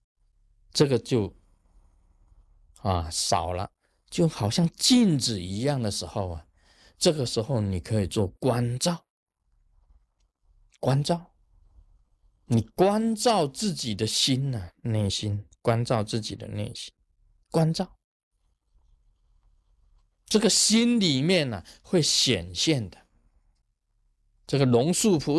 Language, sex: Chinese, male